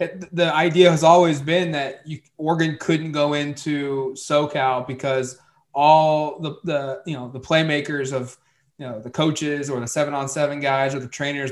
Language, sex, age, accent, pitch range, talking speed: English, male, 20-39, American, 135-165 Hz, 180 wpm